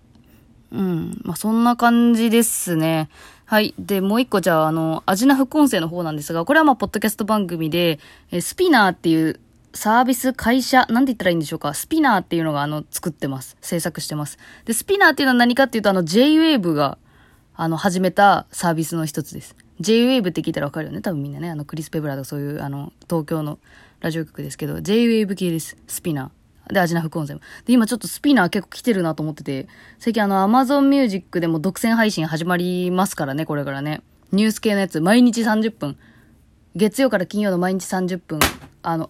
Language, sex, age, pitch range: Japanese, female, 20-39, 155-215 Hz